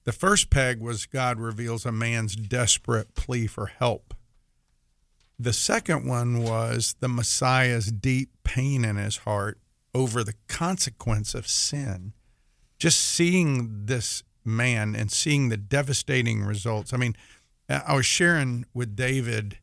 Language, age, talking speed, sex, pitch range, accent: English, 50-69, 135 wpm, male, 110-130 Hz, American